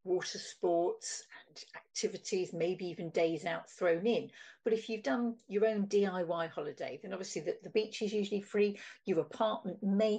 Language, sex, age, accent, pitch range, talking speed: English, female, 50-69, British, 180-245 Hz, 170 wpm